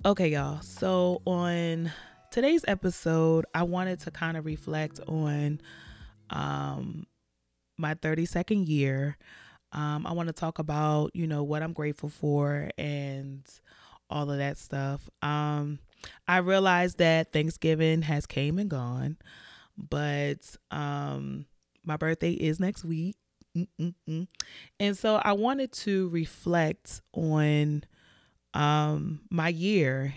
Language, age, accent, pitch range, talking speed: English, 20-39, American, 145-180 Hz, 125 wpm